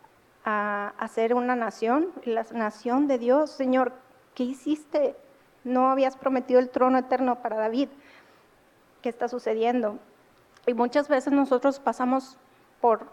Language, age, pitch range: Spanish, 30-49, 220-255 Hz